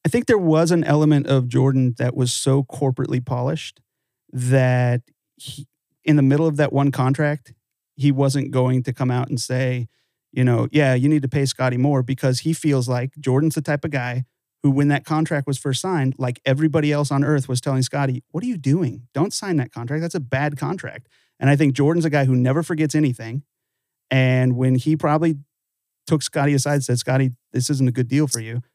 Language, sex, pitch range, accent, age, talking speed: English, male, 125-150 Hz, American, 40-59, 210 wpm